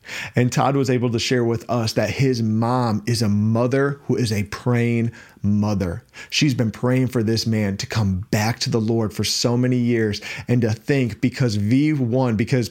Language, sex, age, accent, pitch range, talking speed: English, male, 40-59, American, 110-130 Hz, 195 wpm